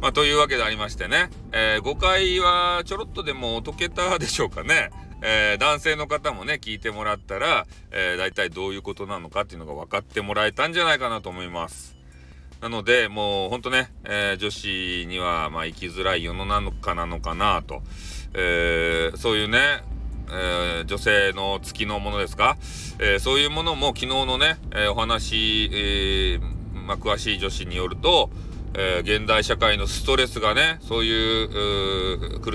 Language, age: Japanese, 40-59